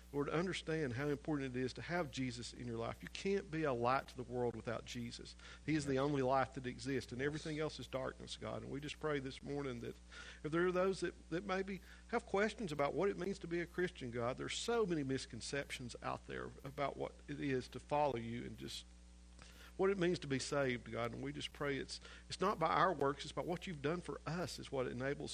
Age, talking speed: 50-69, 245 wpm